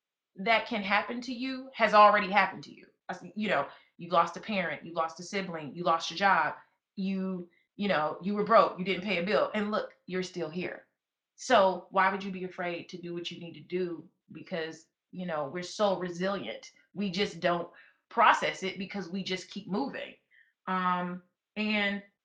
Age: 30-49